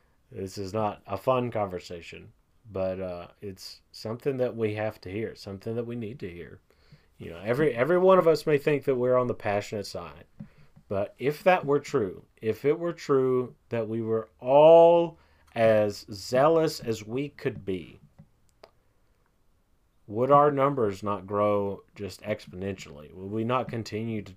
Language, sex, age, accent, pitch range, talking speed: English, male, 30-49, American, 100-130 Hz, 165 wpm